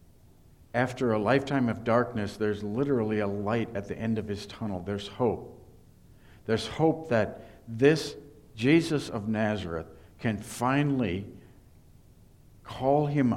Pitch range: 100-125 Hz